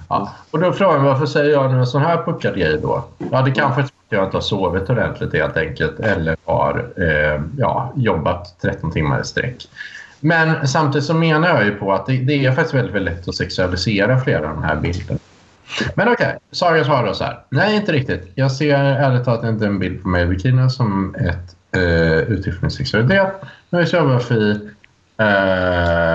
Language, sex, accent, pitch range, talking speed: Swedish, male, Norwegian, 95-140 Hz, 205 wpm